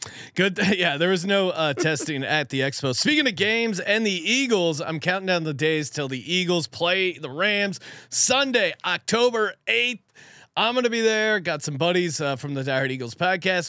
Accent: American